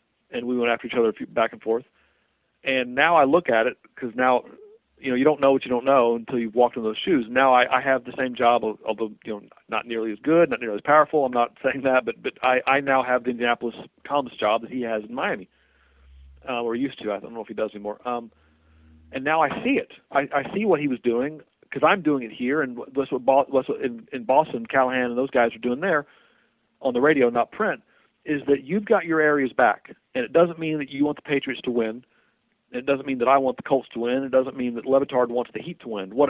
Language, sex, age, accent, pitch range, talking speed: English, male, 40-59, American, 120-150 Hz, 260 wpm